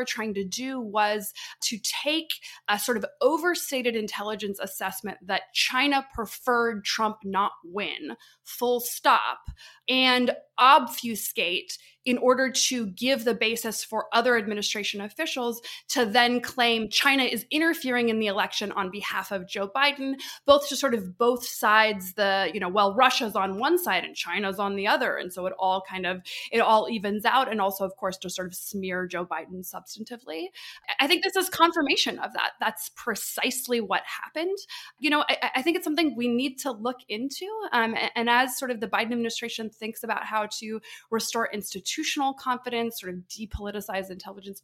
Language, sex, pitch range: English, female, 205-270 Hz